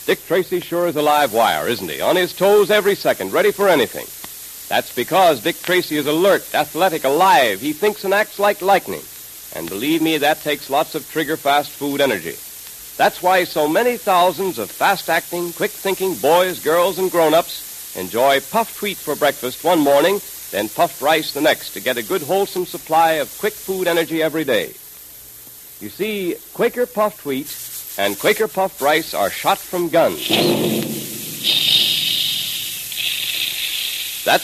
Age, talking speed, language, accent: 60-79, 160 wpm, English, American